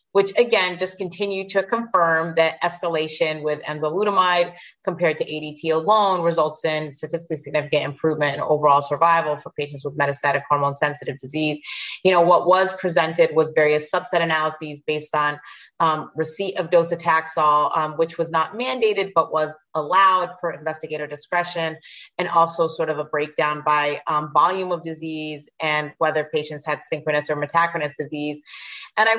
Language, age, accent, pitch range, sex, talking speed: English, 30-49, American, 150-175 Hz, female, 155 wpm